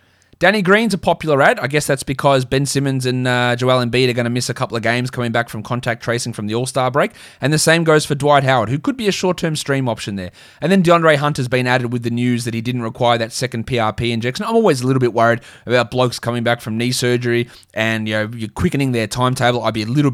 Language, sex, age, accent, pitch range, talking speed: English, male, 20-39, Australian, 110-140 Hz, 270 wpm